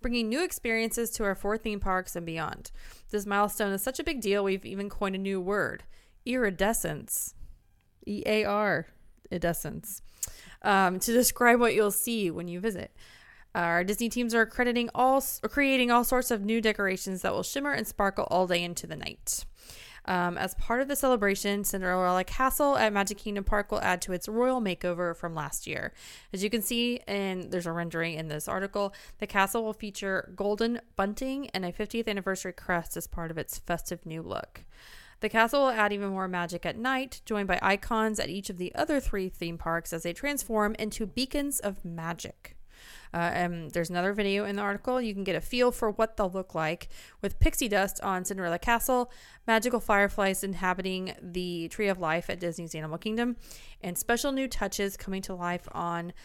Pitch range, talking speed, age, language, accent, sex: 180-225 Hz, 185 wpm, 20-39, English, American, female